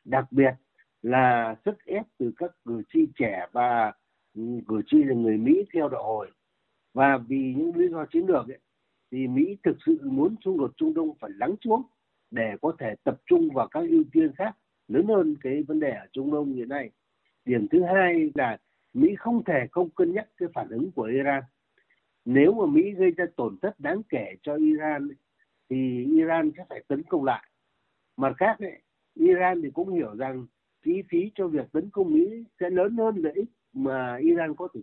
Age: 60-79